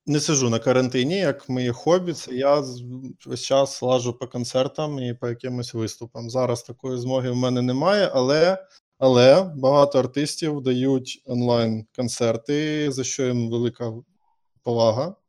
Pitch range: 125-145 Hz